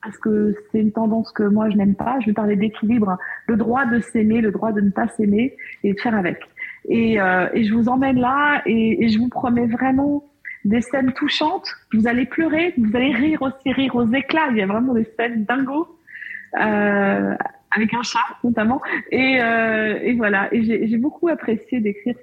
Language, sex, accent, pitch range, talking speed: French, female, French, 210-260 Hz, 205 wpm